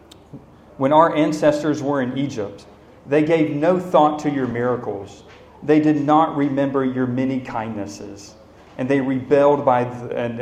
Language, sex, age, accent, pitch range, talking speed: English, male, 40-59, American, 130-175 Hz, 145 wpm